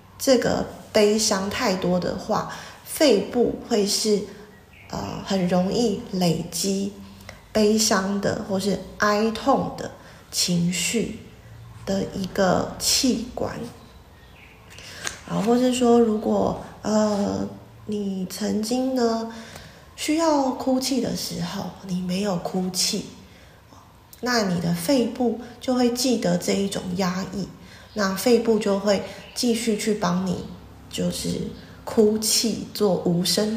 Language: Chinese